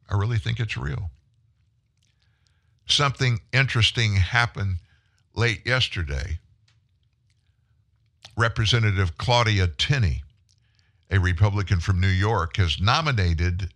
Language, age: English, 60-79